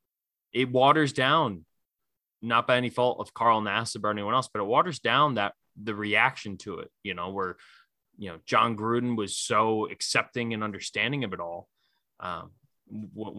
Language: English